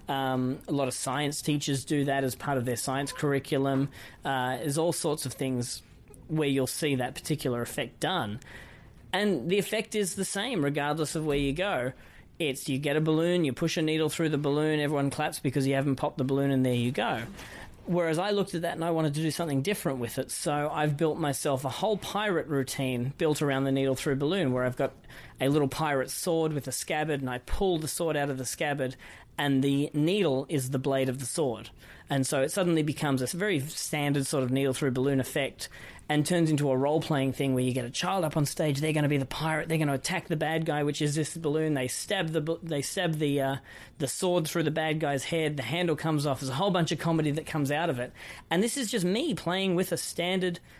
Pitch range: 135-165 Hz